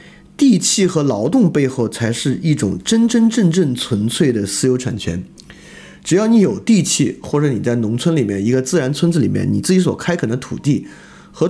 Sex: male